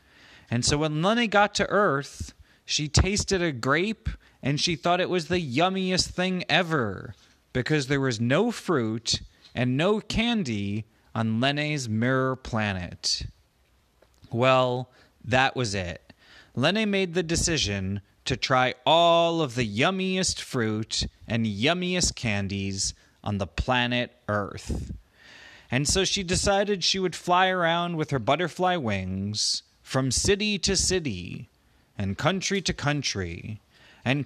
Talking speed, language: 130 wpm, English